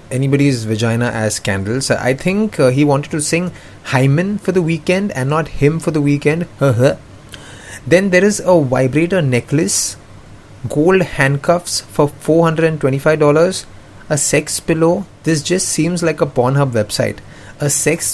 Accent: Indian